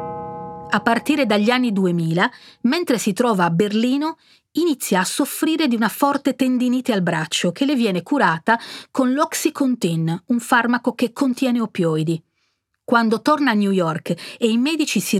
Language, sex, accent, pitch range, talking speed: Italian, female, native, 190-265 Hz, 155 wpm